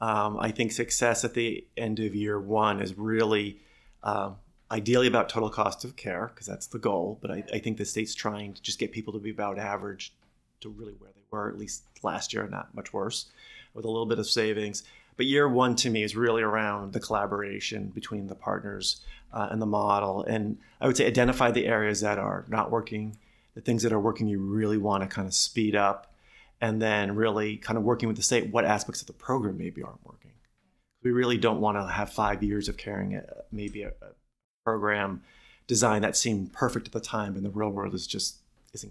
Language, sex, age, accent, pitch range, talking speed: English, male, 30-49, American, 100-115 Hz, 220 wpm